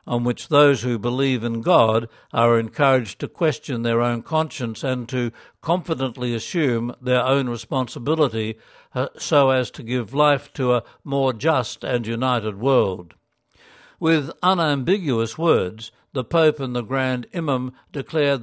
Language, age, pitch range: English, 60-79, 120-145 Hz